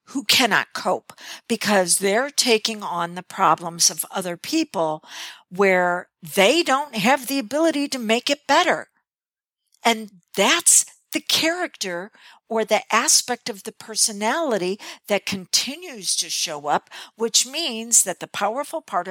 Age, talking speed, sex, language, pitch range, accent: 50-69, 135 wpm, female, English, 185-255 Hz, American